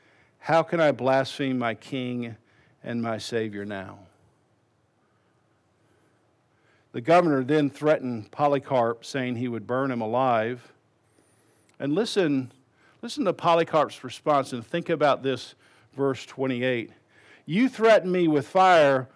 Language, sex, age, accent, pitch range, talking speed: English, male, 50-69, American, 130-185 Hz, 120 wpm